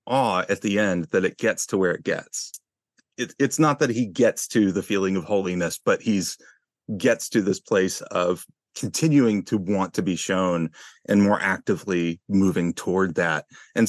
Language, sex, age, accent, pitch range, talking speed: English, male, 30-49, American, 95-120 Hz, 180 wpm